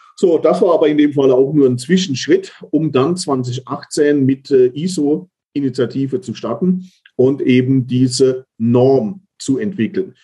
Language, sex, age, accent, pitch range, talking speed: German, male, 40-59, German, 120-145 Hz, 140 wpm